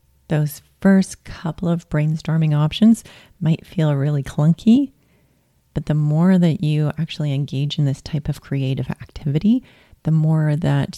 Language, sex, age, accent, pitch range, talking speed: English, female, 30-49, American, 140-170 Hz, 140 wpm